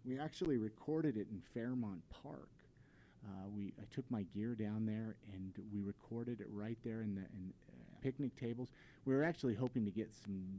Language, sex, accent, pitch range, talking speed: English, male, American, 100-125 Hz, 195 wpm